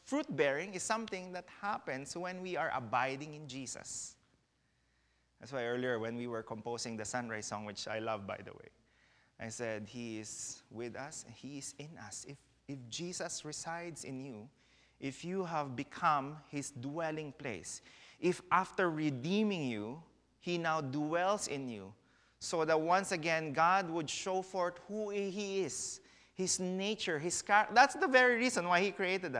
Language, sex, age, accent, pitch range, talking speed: English, male, 30-49, Filipino, 140-200 Hz, 165 wpm